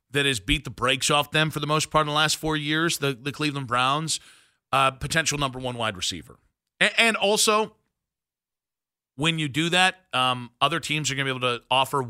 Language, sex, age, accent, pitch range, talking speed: English, male, 40-59, American, 130-160 Hz, 215 wpm